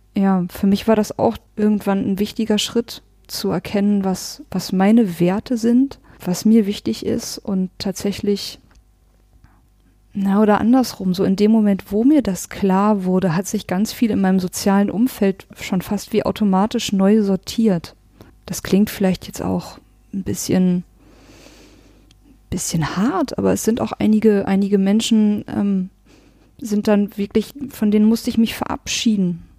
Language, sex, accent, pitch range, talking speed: German, female, German, 190-220 Hz, 150 wpm